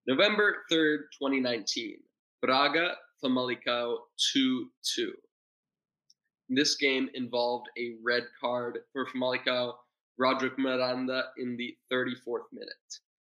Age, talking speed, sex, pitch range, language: 20-39, 85 wpm, male, 120-145 Hz, English